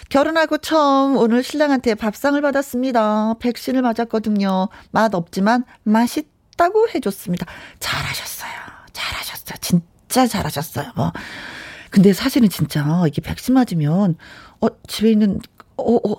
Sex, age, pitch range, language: female, 40-59, 190-255 Hz, Korean